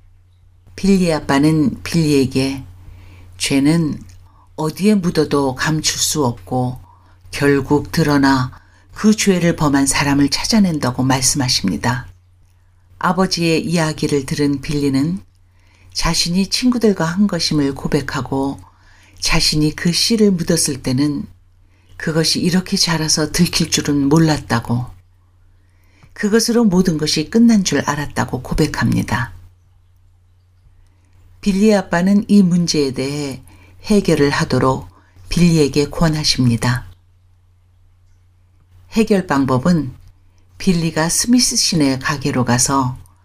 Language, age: Korean, 50-69